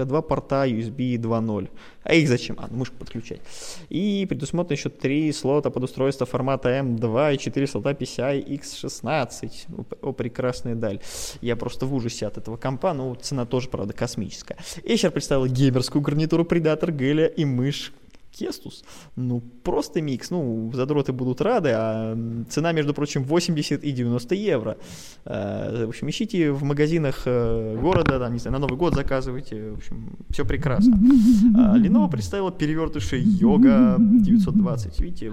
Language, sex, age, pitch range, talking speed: Russian, male, 20-39, 120-160 Hz, 145 wpm